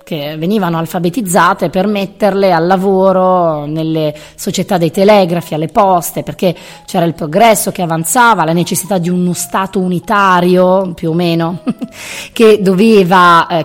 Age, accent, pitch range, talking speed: 20-39, native, 165-215 Hz, 135 wpm